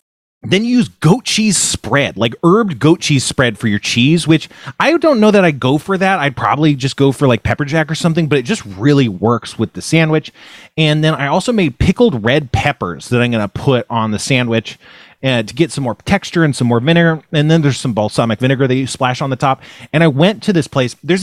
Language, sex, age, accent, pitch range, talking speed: English, male, 30-49, American, 125-165 Hz, 240 wpm